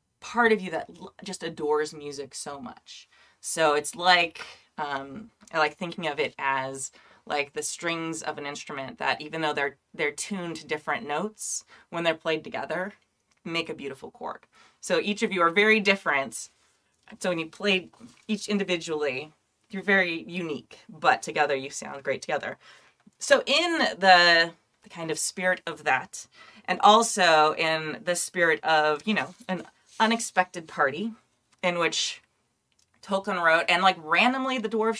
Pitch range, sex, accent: 160-225 Hz, female, American